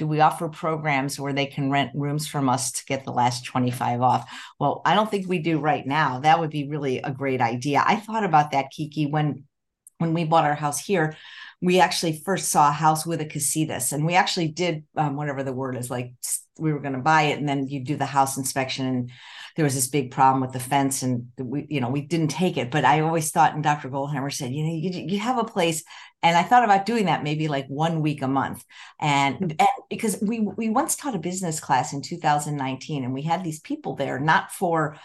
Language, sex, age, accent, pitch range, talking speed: English, female, 50-69, American, 140-175 Hz, 240 wpm